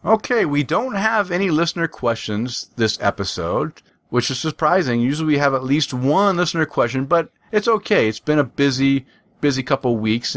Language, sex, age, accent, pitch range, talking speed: English, male, 40-59, American, 125-160 Hz, 180 wpm